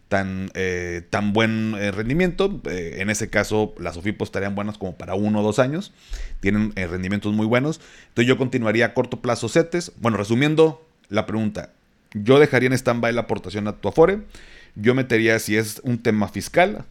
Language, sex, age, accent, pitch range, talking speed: Spanish, male, 30-49, Mexican, 100-115 Hz, 185 wpm